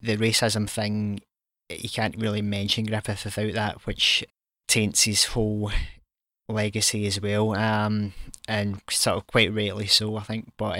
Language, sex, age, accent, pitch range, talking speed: English, male, 20-39, British, 105-110 Hz, 150 wpm